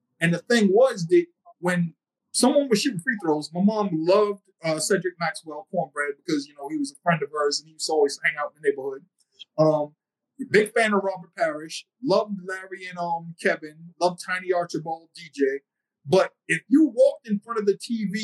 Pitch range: 165-210 Hz